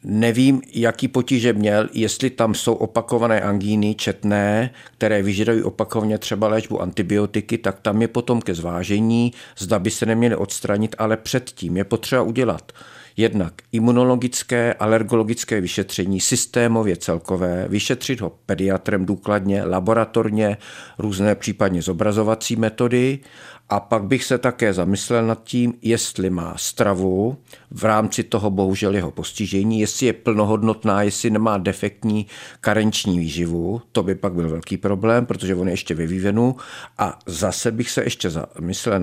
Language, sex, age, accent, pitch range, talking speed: Czech, male, 50-69, native, 100-115 Hz, 135 wpm